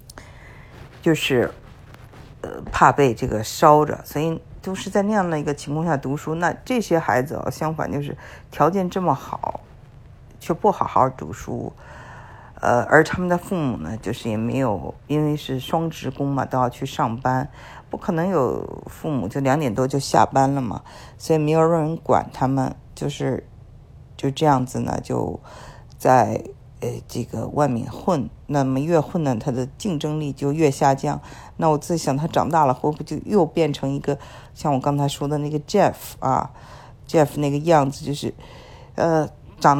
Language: Chinese